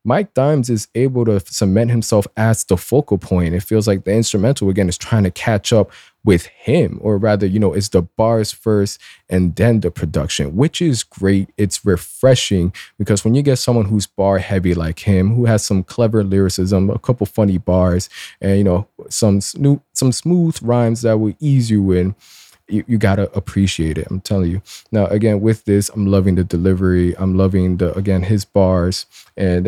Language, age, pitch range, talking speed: English, 20-39, 95-115 Hz, 190 wpm